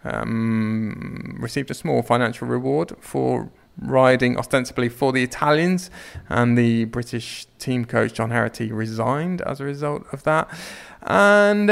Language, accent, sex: English, British, male